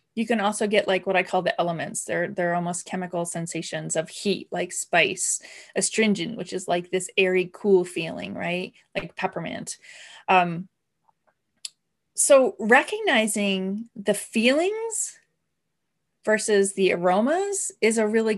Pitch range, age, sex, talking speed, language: 180-225 Hz, 20-39, female, 135 wpm, English